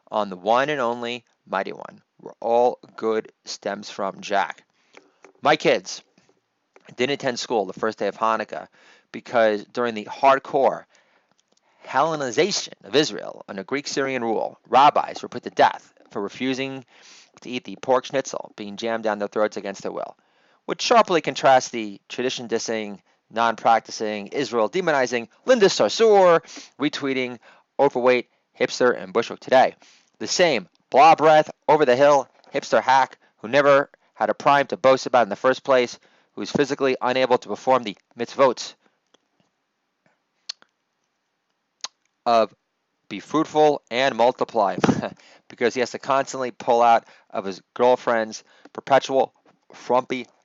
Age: 30-49